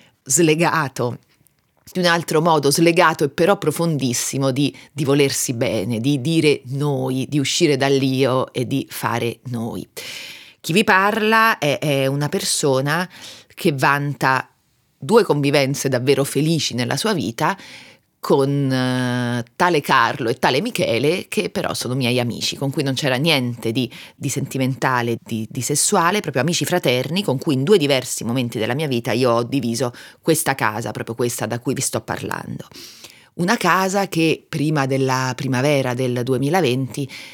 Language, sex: Italian, female